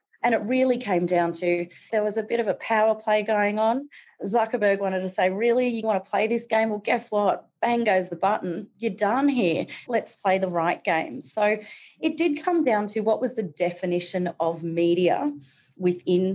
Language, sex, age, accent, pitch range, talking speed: English, female, 30-49, Australian, 180-245 Hz, 200 wpm